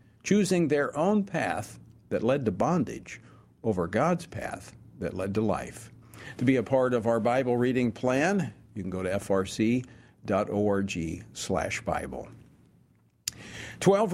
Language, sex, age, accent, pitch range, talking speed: English, male, 50-69, American, 115-150 Hz, 135 wpm